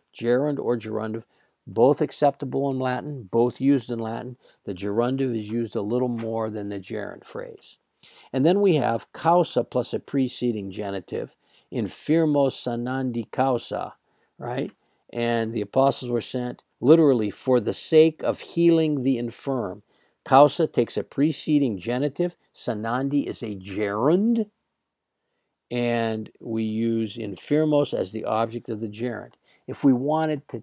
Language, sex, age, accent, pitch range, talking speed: English, male, 50-69, American, 110-140 Hz, 140 wpm